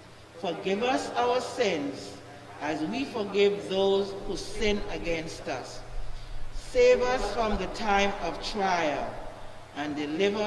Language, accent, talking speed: English, Nigerian, 120 wpm